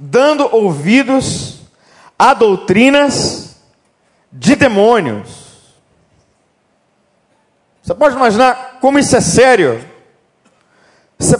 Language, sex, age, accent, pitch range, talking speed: Portuguese, male, 50-69, Brazilian, 165-260 Hz, 75 wpm